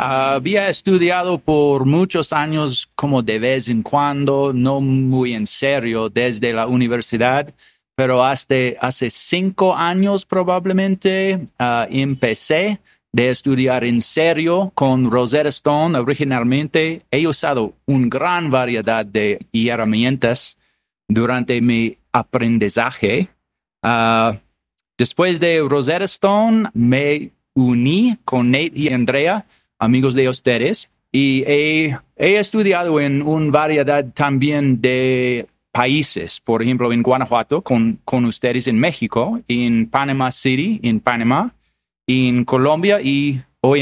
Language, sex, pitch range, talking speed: English, male, 120-155 Hz, 120 wpm